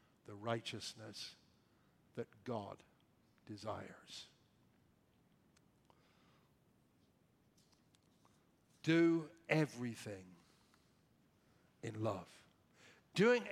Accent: American